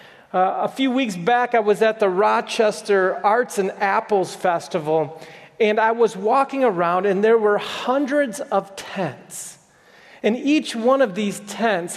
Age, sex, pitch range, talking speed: 40-59, male, 195-250 Hz, 155 wpm